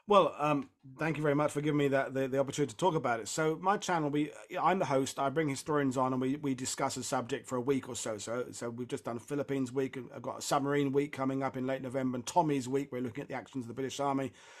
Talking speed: 285 wpm